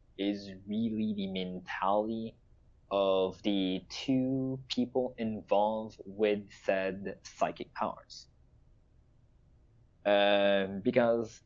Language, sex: English, male